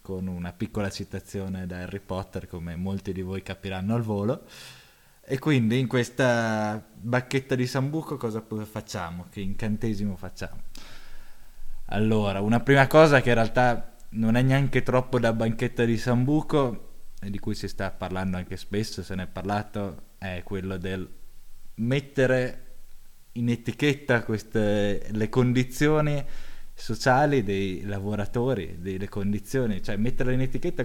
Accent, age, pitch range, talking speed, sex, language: native, 20-39, 100-125 Hz, 140 wpm, male, Italian